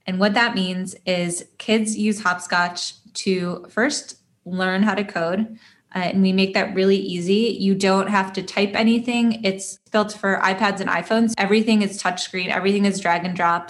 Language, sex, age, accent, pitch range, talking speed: English, female, 10-29, American, 185-215 Hz, 180 wpm